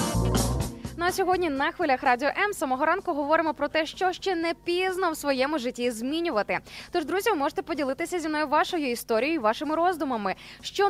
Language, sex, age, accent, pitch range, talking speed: Ukrainian, female, 20-39, native, 245-330 Hz, 175 wpm